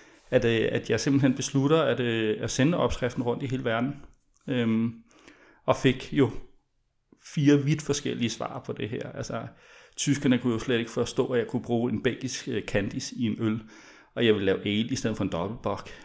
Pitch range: 110-125 Hz